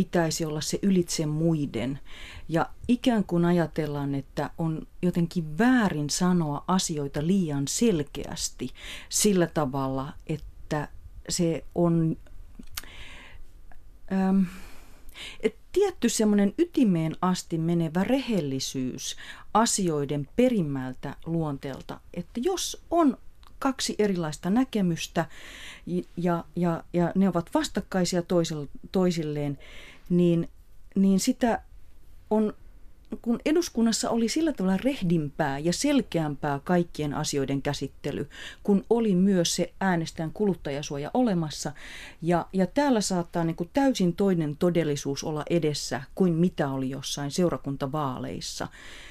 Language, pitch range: Finnish, 150-195 Hz